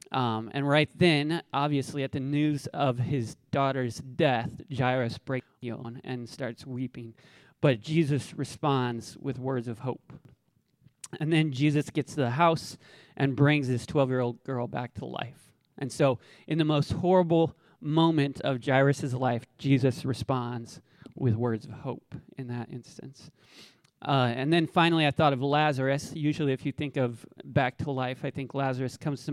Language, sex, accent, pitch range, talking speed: English, male, American, 125-150 Hz, 165 wpm